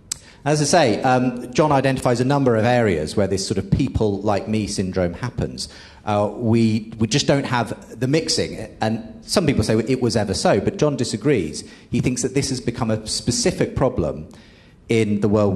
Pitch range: 105-135 Hz